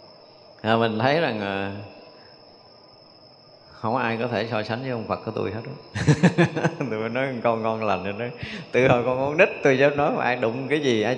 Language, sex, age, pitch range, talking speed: Vietnamese, male, 20-39, 115-155 Hz, 205 wpm